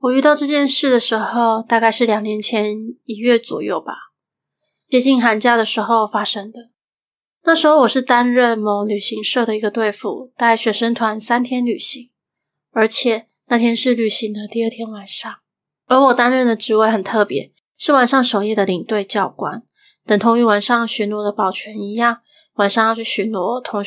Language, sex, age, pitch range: Chinese, female, 20-39, 210-245 Hz